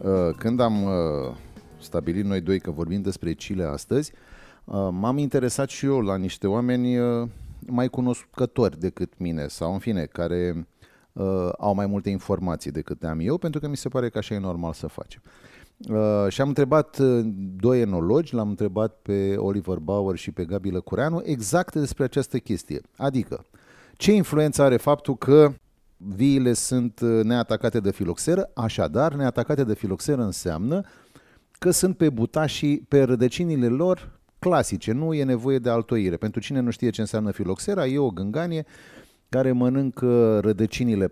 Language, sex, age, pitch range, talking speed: Romanian, male, 30-49, 100-140 Hz, 150 wpm